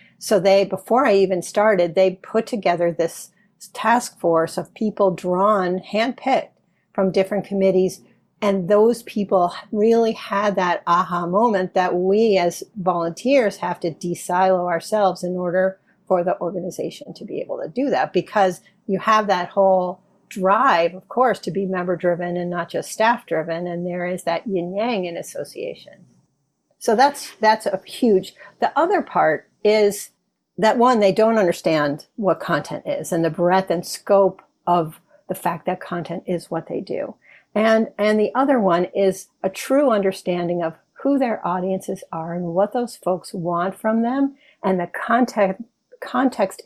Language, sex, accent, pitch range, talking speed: English, female, American, 175-215 Hz, 165 wpm